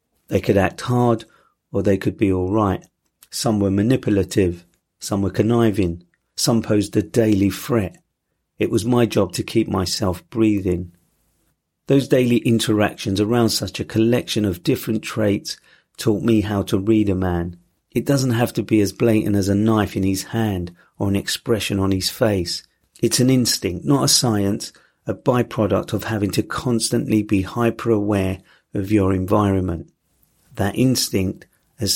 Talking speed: 160 wpm